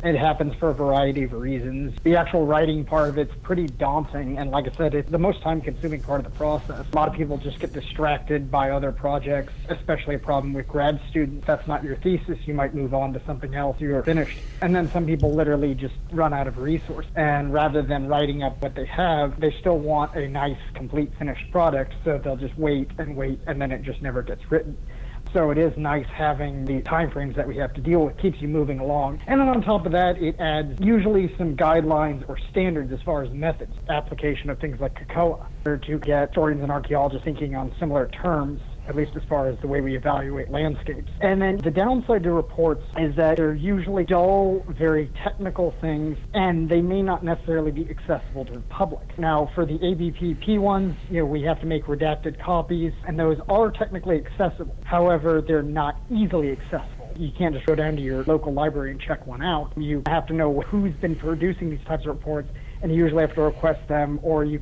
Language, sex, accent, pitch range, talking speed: English, male, American, 140-165 Hz, 220 wpm